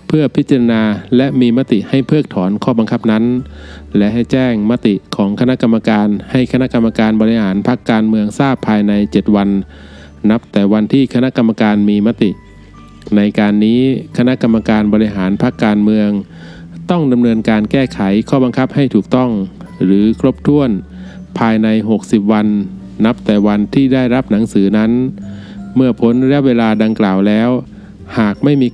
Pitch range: 105-125 Hz